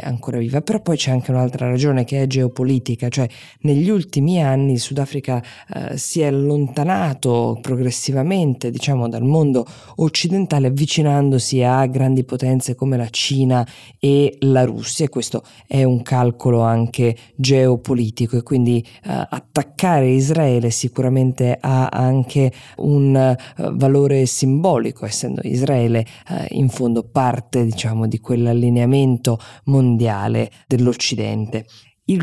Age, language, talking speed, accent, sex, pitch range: 20-39, Italian, 125 wpm, native, female, 120-140 Hz